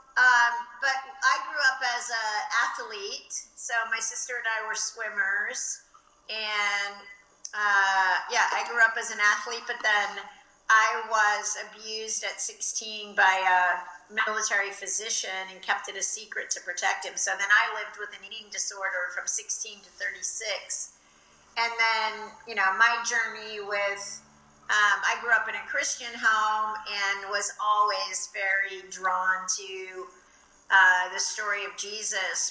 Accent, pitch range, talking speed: American, 195-225 Hz, 150 wpm